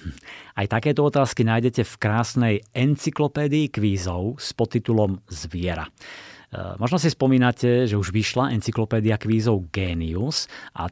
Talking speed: 115 wpm